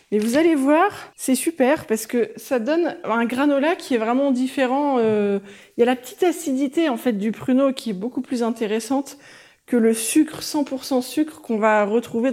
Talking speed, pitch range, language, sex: 195 wpm, 210-280 Hz, French, female